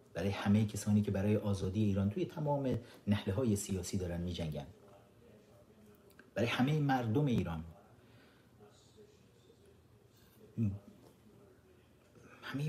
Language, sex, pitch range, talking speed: Persian, male, 100-125 Hz, 95 wpm